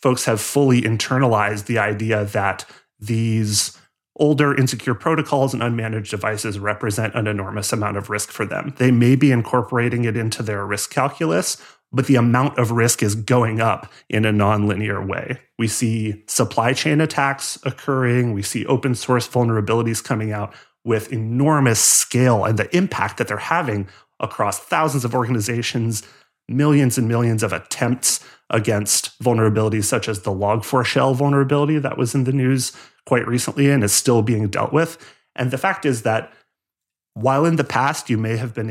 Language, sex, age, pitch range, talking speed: English, male, 30-49, 110-130 Hz, 165 wpm